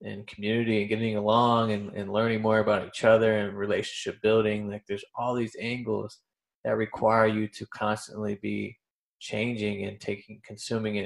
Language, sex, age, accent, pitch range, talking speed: English, male, 20-39, American, 105-115 Hz, 165 wpm